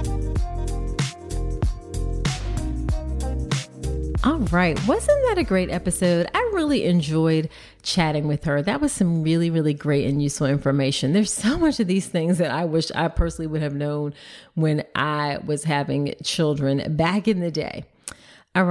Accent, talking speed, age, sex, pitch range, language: American, 150 wpm, 30-49, female, 150-185 Hz, English